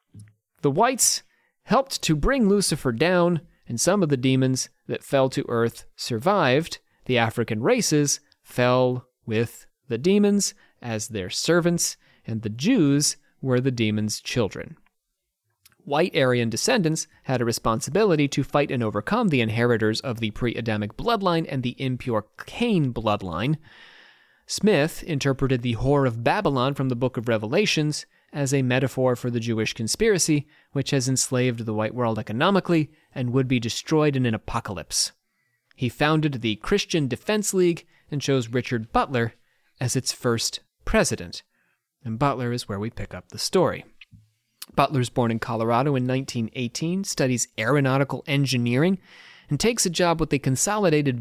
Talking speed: 150 wpm